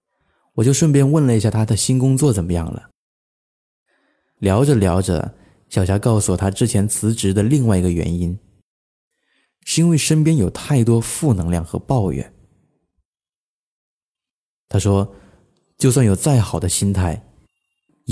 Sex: male